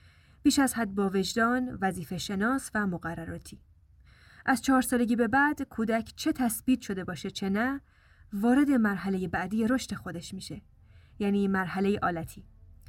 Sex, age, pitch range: female, 10-29, 190-230 Hz